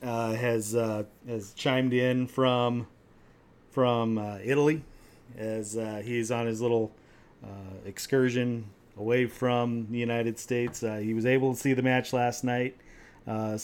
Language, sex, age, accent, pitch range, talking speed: English, male, 40-59, American, 115-135 Hz, 150 wpm